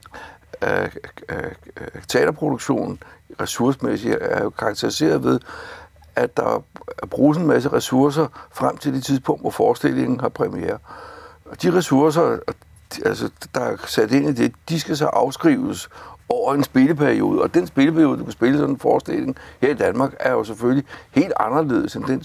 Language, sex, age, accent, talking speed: Danish, male, 60-79, native, 150 wpm